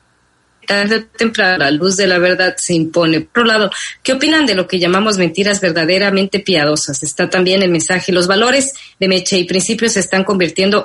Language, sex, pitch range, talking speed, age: Spanish, female, 170-205 Hz, 185 wpm, 30-49